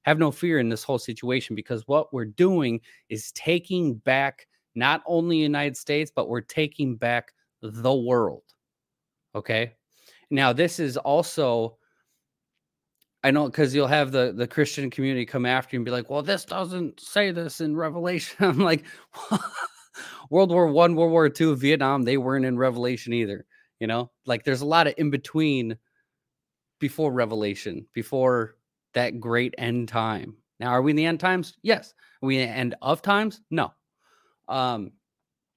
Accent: American